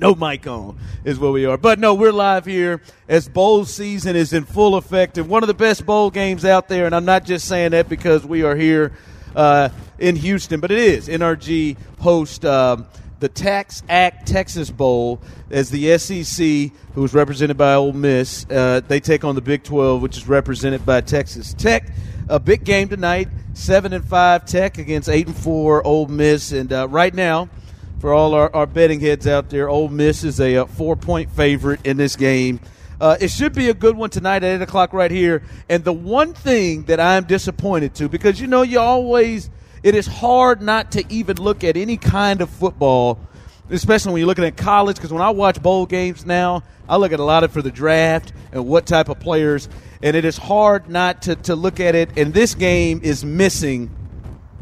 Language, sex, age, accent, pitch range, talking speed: English, male, 40-59, American, 140-185 Hz, 205 wpm